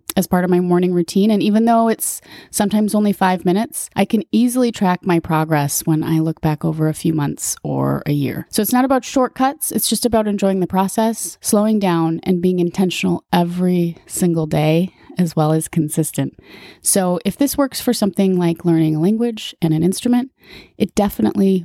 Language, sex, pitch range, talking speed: English, female, 165-215 Hz, 190 wpm